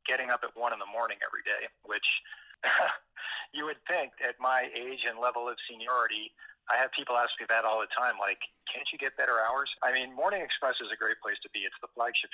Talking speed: 235 wpm